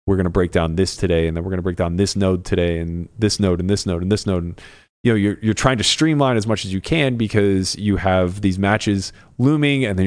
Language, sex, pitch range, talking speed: English, male, 90-115 Hz, 285 wpm